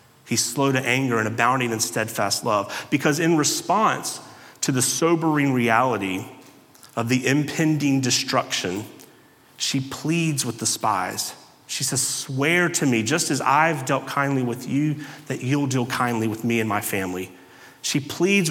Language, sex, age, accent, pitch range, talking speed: English, male, 30-49, American, 120-145 Hz, 155 wpm